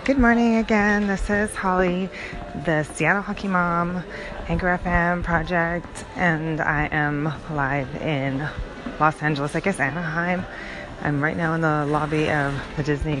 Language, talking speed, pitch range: English, 145 wpm, 135-160 Hz